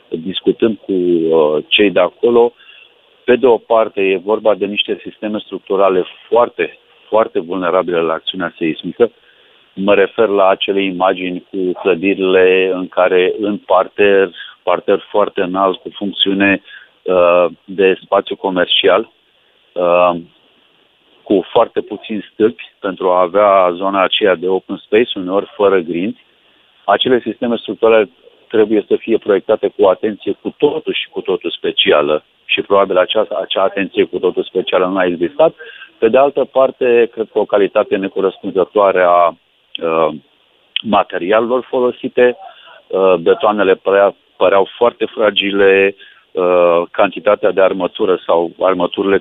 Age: 40-59